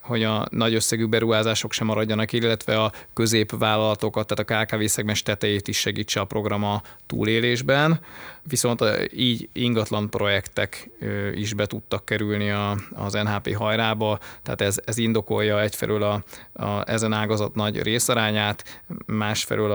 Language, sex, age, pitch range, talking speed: Hungarian, male, 20-39, 100-110 Hz, 130 wpm